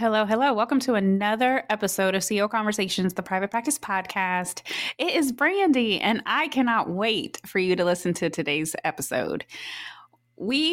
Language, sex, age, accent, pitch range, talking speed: English, female, 20-39, American, 175-220 Hz, 155 wpm